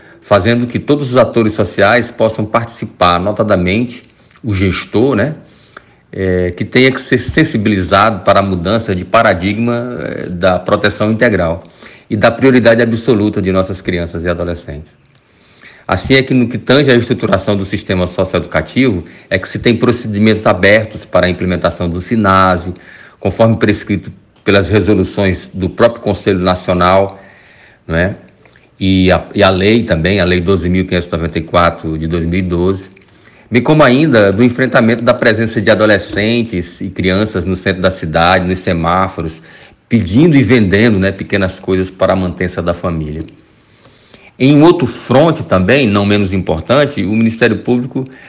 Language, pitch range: Portuguese, 95-115 Hz